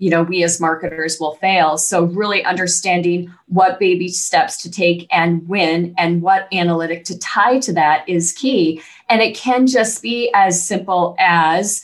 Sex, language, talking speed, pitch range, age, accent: female, English, 170 wpm, 175-210 Hz, 30-49, American